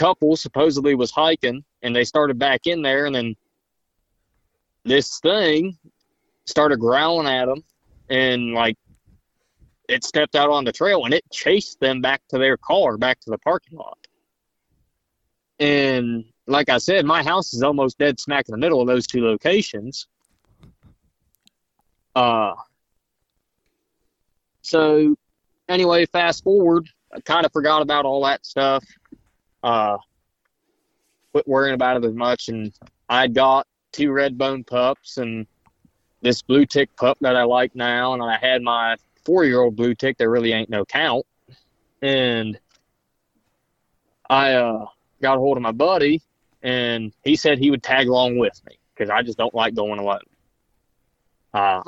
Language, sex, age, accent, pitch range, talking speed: English, male, 20-39, American, 120-145 Hz, 150 wpm